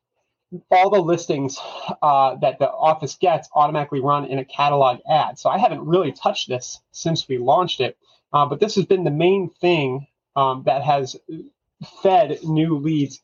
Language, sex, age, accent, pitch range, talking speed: English, male, 30-49, American, 130-160 Hz, 170 wpm